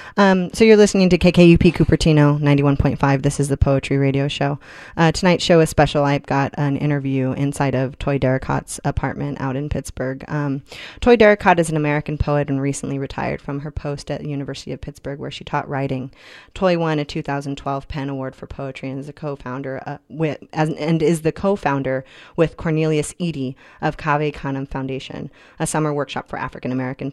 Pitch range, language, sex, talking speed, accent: 140-165 Hz, English, female, 185 wpm, American